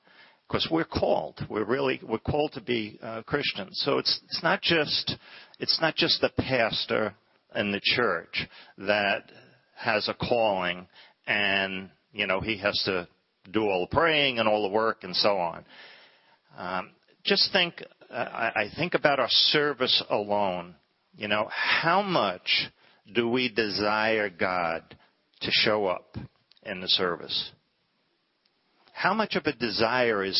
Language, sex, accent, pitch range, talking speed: English, male, American, 105-130 Hz, 145 wpm